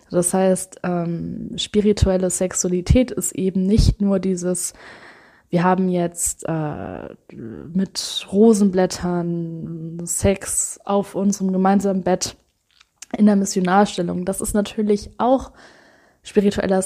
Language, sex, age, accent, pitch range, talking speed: German, female, 20-39, German, 185-215 Hz, 105 wpm